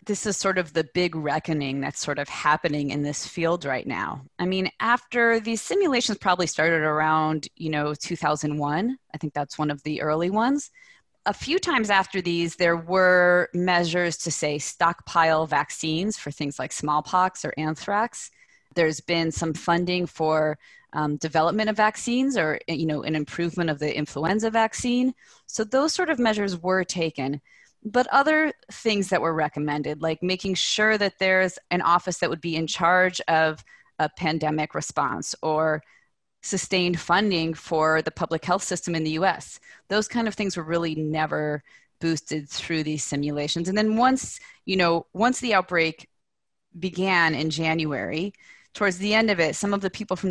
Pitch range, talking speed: 155-210 Hz, 170 wpm